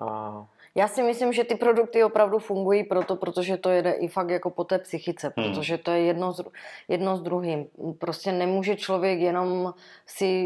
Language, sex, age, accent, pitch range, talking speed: Czech, female, 30-49, native, 165-190 Hz, 165 wpm